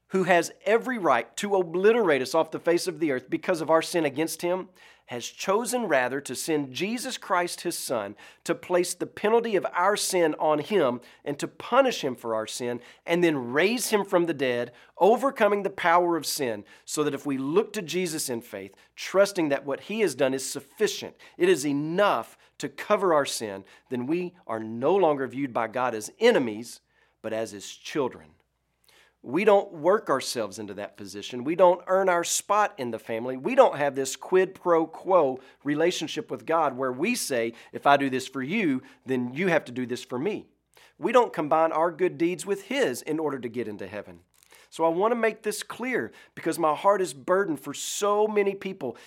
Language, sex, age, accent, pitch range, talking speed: English, male, 40-59, American, 135-200 Hz, 200 wpm